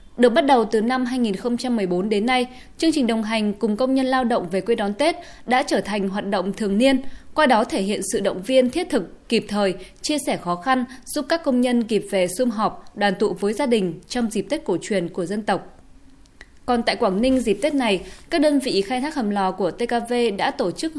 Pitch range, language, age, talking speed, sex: 200-260 Hz, Vietnamese, 20-39, 235 wpm, female